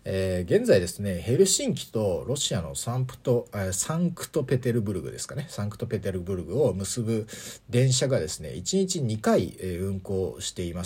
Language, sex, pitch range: Japanese, male, 95-135 Hz